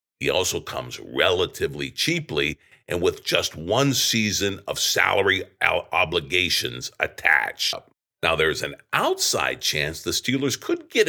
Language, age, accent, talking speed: English, 50-69, American, 125 wpm